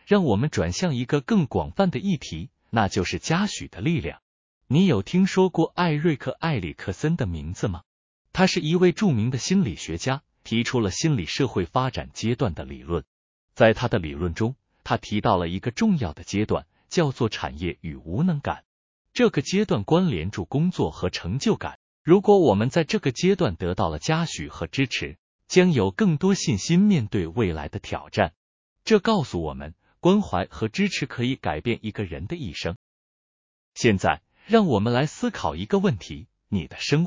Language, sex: Chinese, male